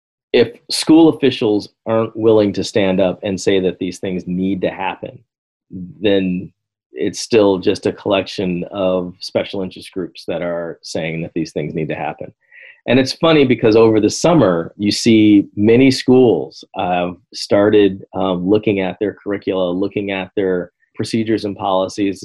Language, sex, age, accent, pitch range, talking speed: English, male, 40-59, American, 90-115 Hz, 160 wpm